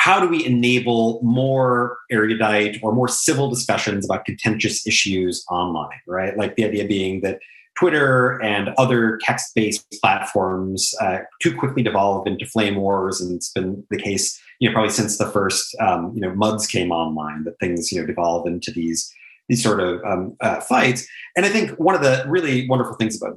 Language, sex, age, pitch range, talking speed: English, male, 30-49, 100-125 Hz, 185 wpm